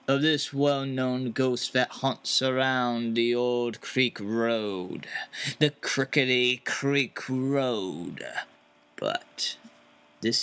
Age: 30-49